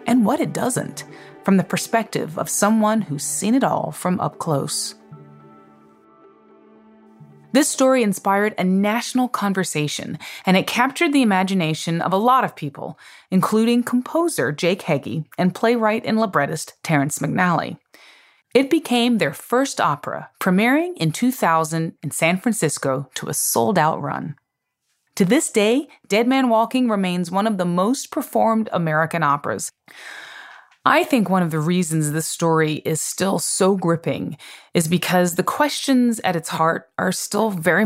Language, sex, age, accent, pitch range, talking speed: English, female, 30-49, American, 160-230 Hz, 145 wpm